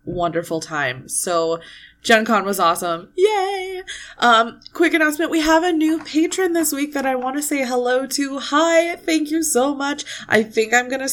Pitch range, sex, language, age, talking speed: 185-245 Hz, female, English, 20-39, 185 wpm